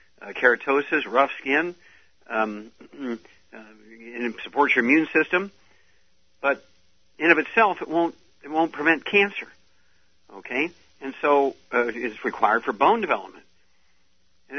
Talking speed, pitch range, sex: 130 wpm, 110-145 Hz, male